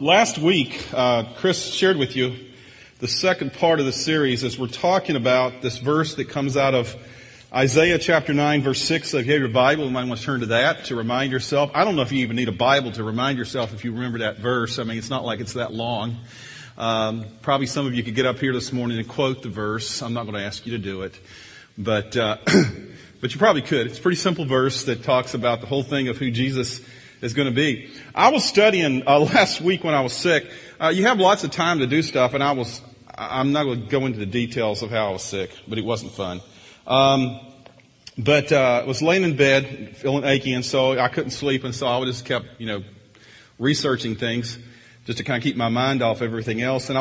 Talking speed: 240 wpm